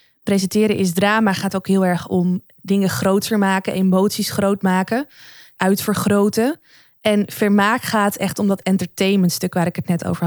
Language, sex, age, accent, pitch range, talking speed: Dutch, female, 20-39, Dutch, 190-225 Hz, 160 wpm